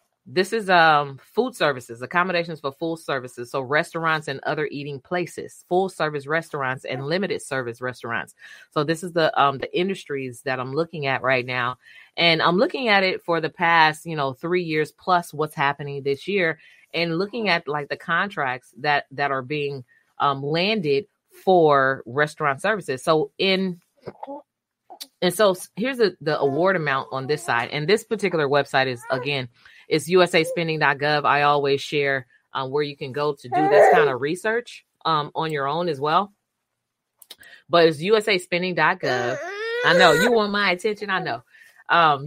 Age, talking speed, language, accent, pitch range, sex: 30-49, 170 wpm, English, American, 140-185 Hz, female